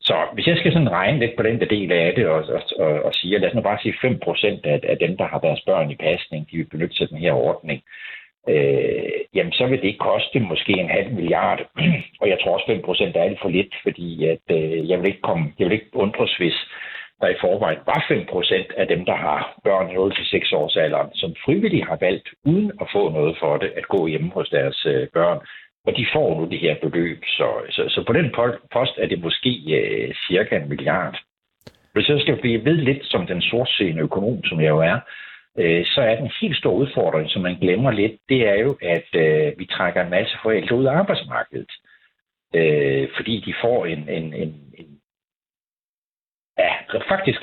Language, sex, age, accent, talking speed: Danish, male, 60-79, native, 220 wpm